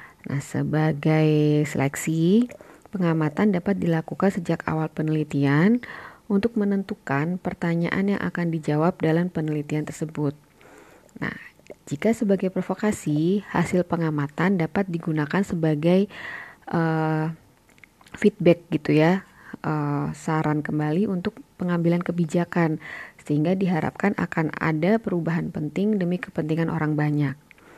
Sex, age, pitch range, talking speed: female, 30-49, 155-185 Hz, 100 wpm